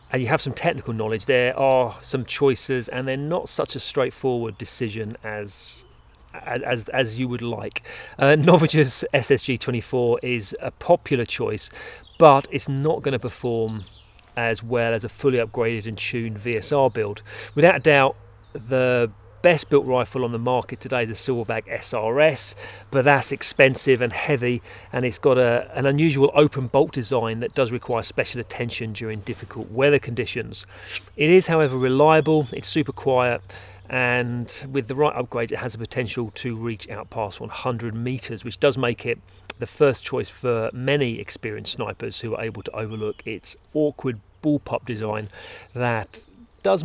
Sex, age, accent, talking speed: male, 40-59, British, 165 wpm